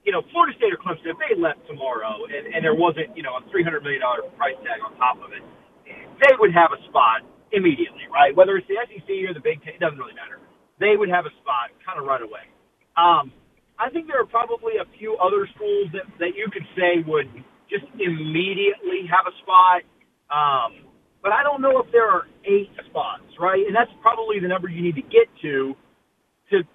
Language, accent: English, American